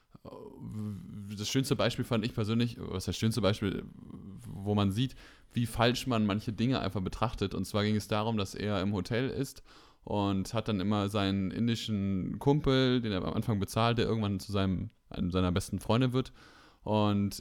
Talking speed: 185 wpm